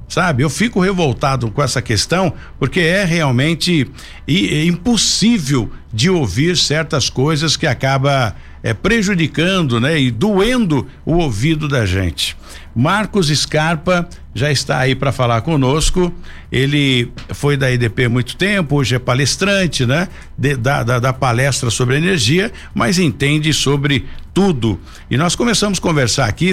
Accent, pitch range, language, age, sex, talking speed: Brazilian, 130-175 Hz, Portuguese, 60-79, male, 140 wpm